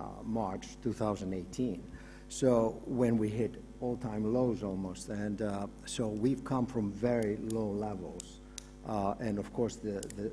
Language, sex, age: English, male, 60-79